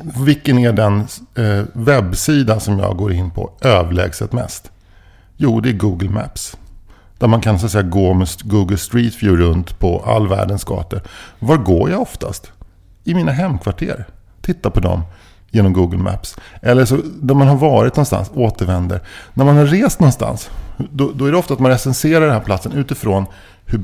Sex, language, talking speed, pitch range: male, English, 175 wpm, 95-125 Hz